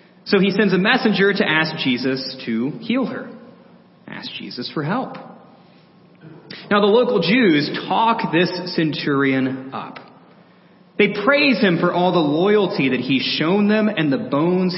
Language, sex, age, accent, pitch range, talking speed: English, male, 30-49, American, 155-205 Hz, 150 wpm